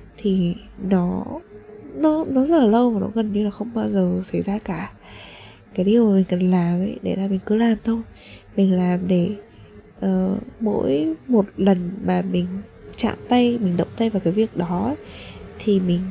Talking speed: 195 wpm